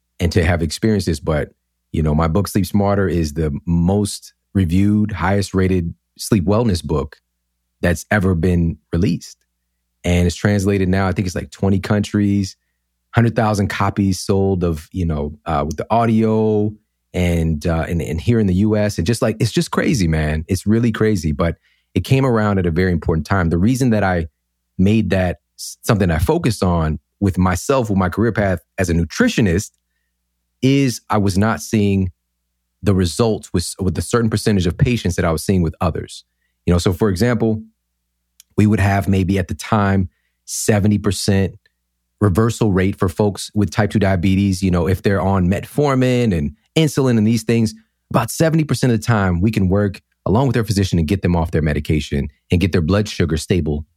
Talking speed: 185 wpm